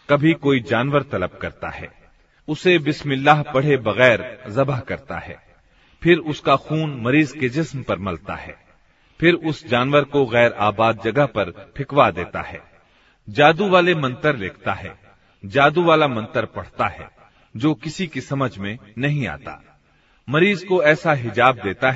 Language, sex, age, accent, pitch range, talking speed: Hindi, male, 40-59, native, 110-150 Hz, 150 wpm